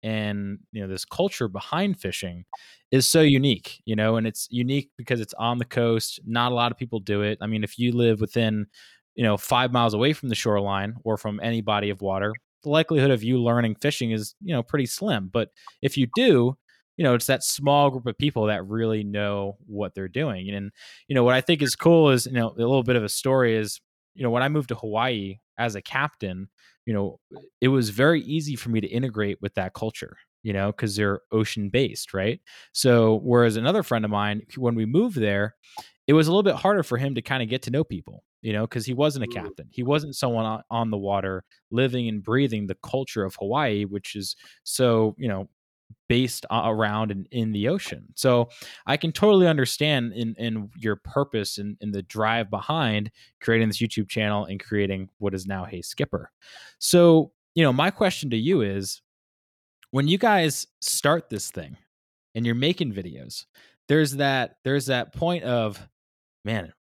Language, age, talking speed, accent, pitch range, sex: English, 20-39, 205 wpm, American, 105-135 Hz, male